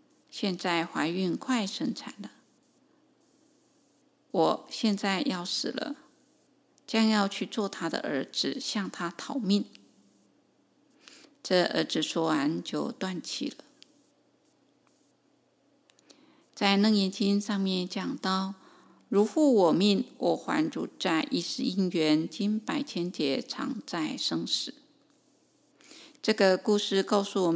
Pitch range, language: 195-285 Hz, Chinese